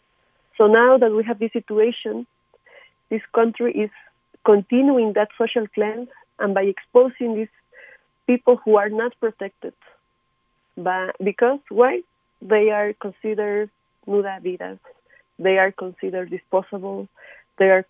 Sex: female